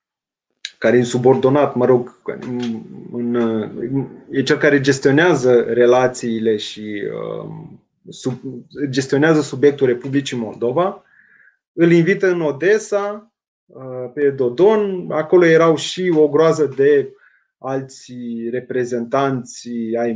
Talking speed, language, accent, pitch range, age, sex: 105 wpm, Romanian, native, 125-175 Hz, 20-39, male